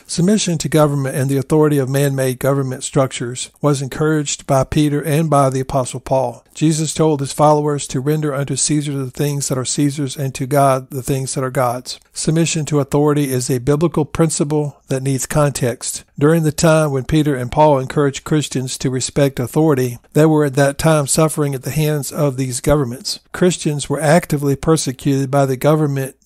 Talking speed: 185 wpm